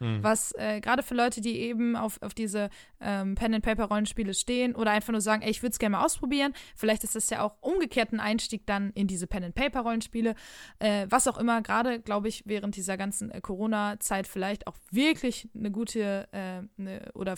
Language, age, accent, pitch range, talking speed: German, 20-39, German, 190-225 Hz, 195 wpm